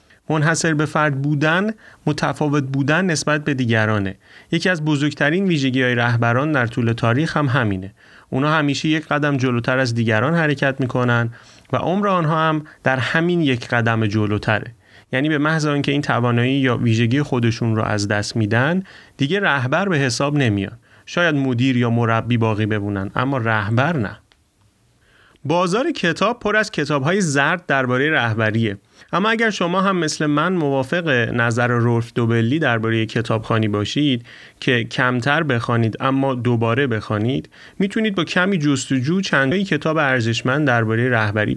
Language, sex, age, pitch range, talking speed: Persian, male, 30-49, 115-155 Hz, 145 wpm